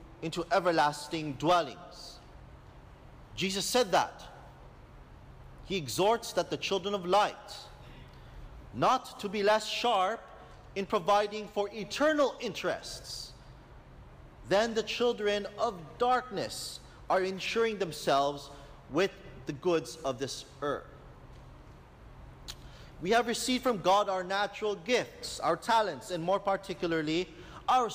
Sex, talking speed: male, 110 wpm